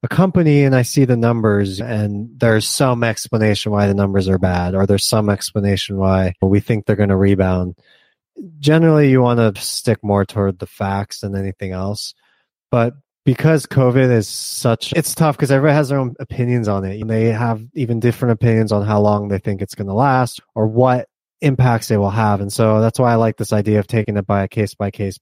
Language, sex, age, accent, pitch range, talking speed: English, male, 20-39, American, 105-135 Hz, 210 wpm